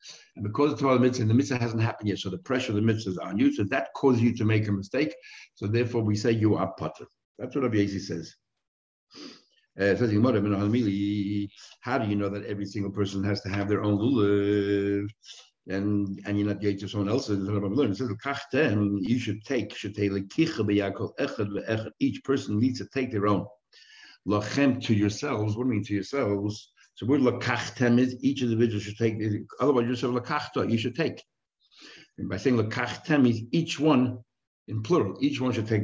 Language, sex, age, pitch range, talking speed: English, male, 60-79, 100-125 Hz, 185 wpm